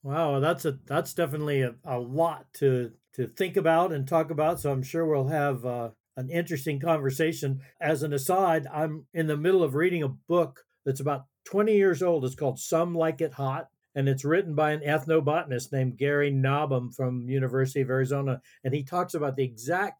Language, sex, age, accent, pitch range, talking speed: English, male, 60-79, American, 135-165 Hz, 195 wpm